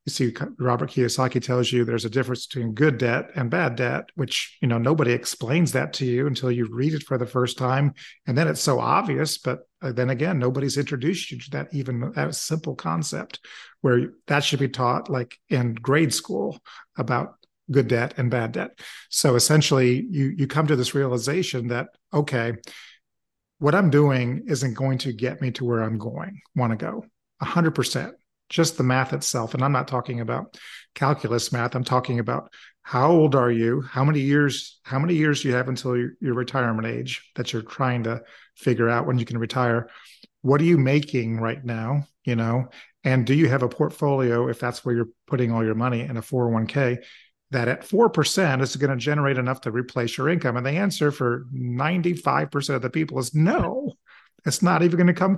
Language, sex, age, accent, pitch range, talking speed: English, male, 40-59, American, 120-145 Hz, 200 wpm